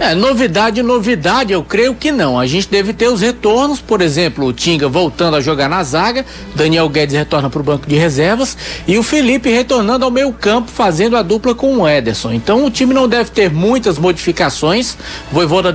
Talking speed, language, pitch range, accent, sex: 200 wpm, Portuguese, 170-230 Hz, Brazilian, male